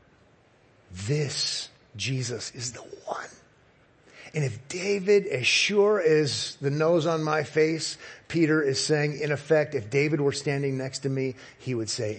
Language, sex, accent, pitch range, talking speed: English, male, American, 120-150 Hz, 155 wpm